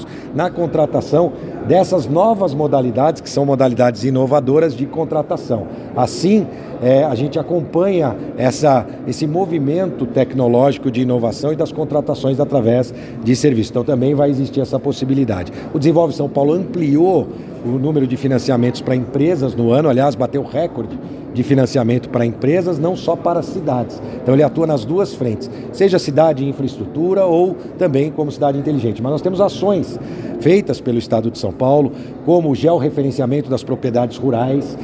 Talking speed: 150 wpm